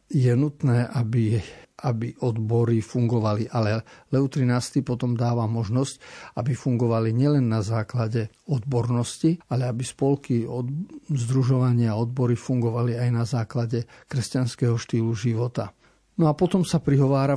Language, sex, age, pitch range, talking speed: Slovak, male, 50-69, 115-135 Hz, 130 wpm